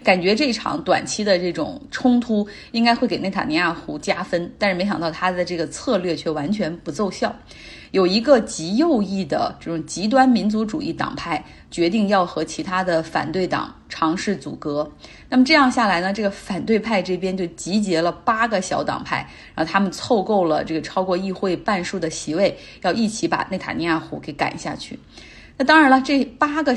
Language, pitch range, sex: Chinese, 170-230 Hz, female